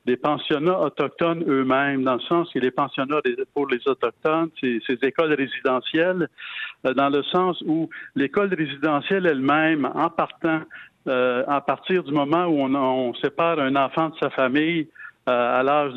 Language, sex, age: French, male, 60-79